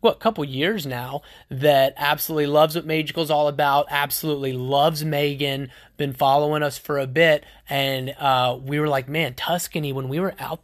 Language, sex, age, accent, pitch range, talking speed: English, male, 20-39, American, 140-185 Hz, 185 wpm